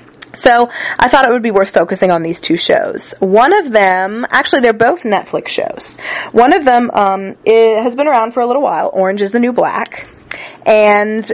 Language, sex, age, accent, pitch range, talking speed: English, female, 20-39, American, 175-220 Hz, 200 wpm